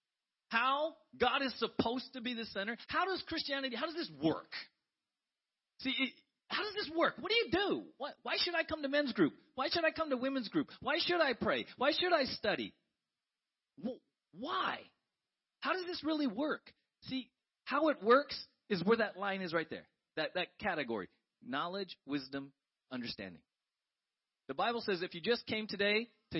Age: 40-59